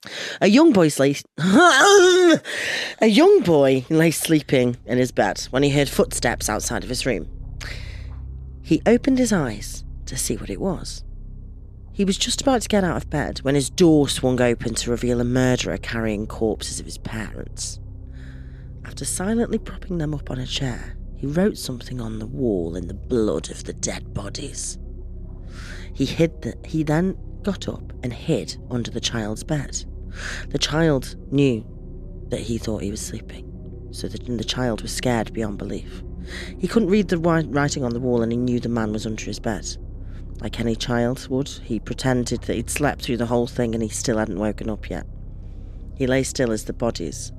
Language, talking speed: English, 185 wpm